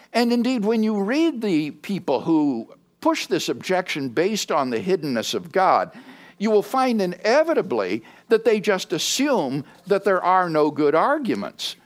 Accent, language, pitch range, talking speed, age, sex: American, English, 160-245 Hz, 155 wpm, 60-79, male